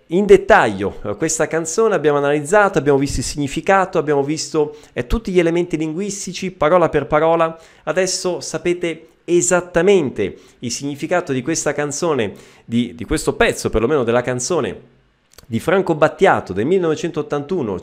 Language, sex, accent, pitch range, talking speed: Italian, male, native, 125-180 Hz, 135 wpm